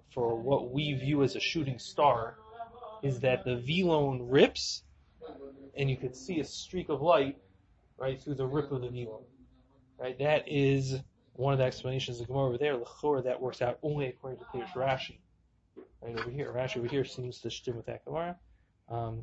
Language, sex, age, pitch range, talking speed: English, male, 20-39, 120-140 Hz, 195 wpm